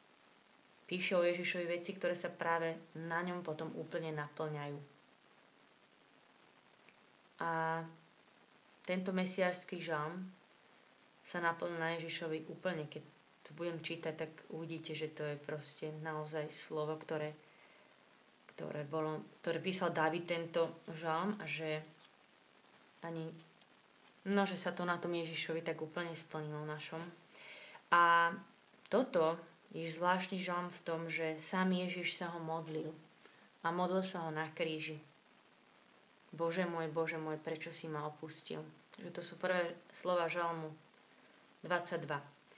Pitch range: 160-175 Hz